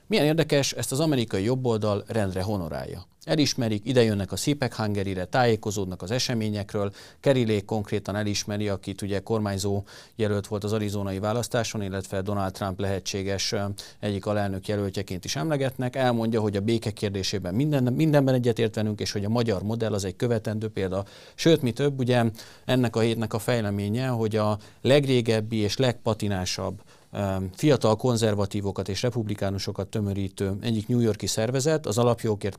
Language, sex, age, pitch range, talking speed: Hungarian, male, 40-59, 100-125 Hz, 145 wpm